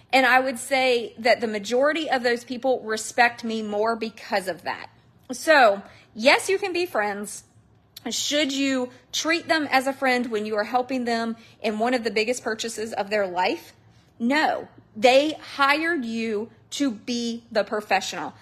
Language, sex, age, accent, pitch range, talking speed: English, female, 30-49, American, 215-260 Hz, 165 wpm